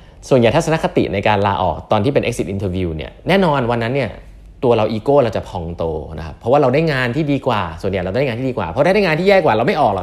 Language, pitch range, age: Thai, 90-125 Hz, 20-39